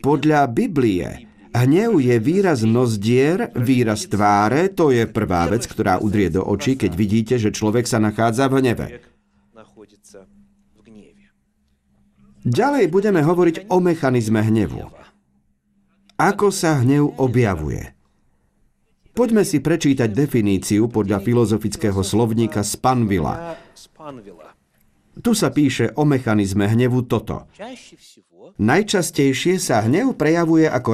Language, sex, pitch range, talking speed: Slovak, male, 105-155 Hz, 105 wpm